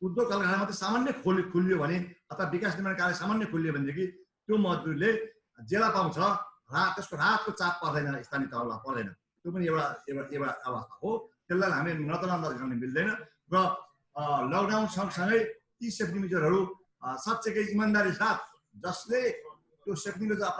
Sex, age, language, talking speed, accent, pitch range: male, 50-69, Hindi, 130 wpm, native, 145-215 Hz